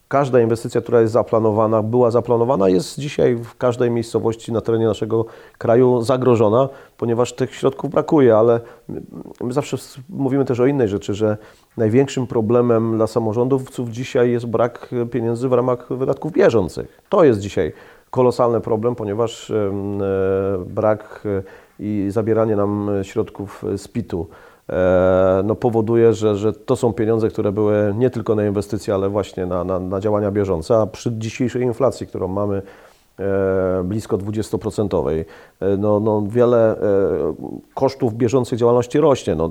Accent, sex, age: native, male, 40-59